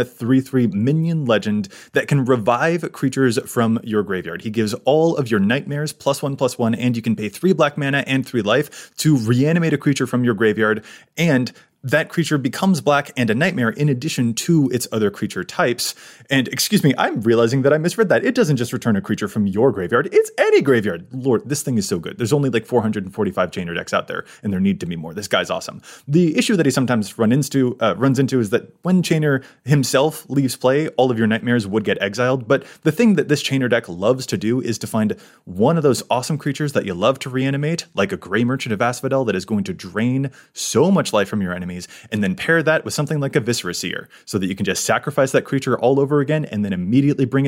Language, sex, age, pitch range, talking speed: English, male, 20-39, 110-145 Hz, 235 wpm